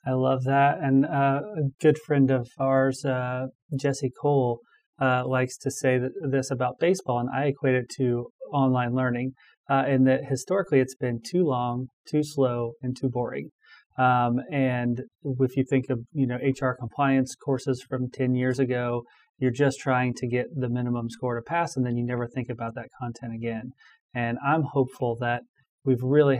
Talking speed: 185 wpm